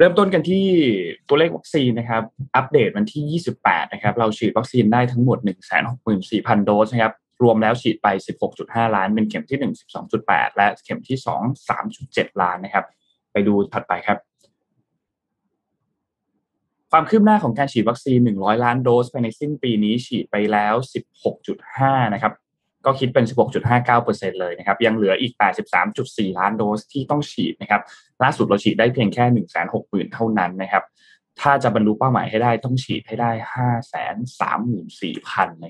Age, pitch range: 20-39, 105-125 Hz